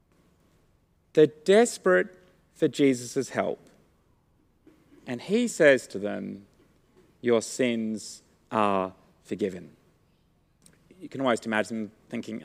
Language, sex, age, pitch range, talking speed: English, male, 30-49, 110-185 Hz, 90 wpm